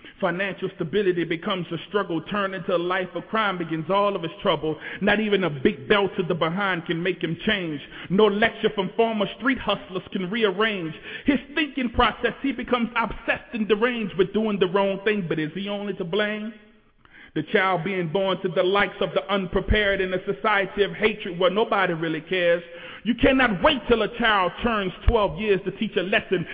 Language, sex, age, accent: English, male, 40-59, American